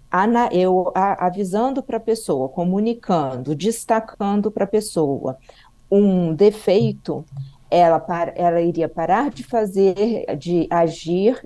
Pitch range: 175-230 Hz